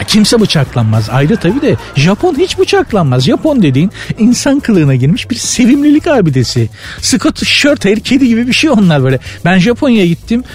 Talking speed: 155 wpm